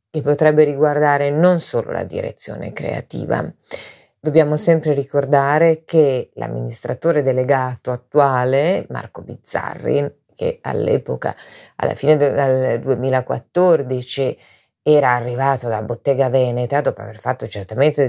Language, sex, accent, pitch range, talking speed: Italian, female, native, 125-155 Hz, 105 wpm